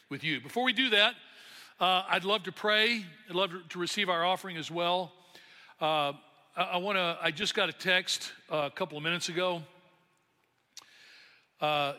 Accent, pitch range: American, 140-170 Hz